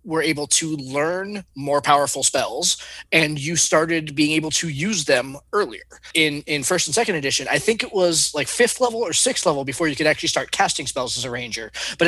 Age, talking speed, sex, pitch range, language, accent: 20-39, 215 wpm, male, 145-180 Hz, English, American